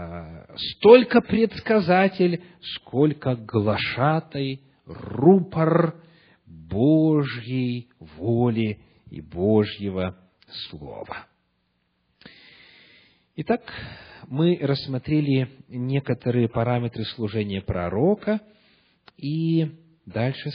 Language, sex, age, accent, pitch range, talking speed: Russian, male, 40-59, native, 110-180 Hz, 55 wpm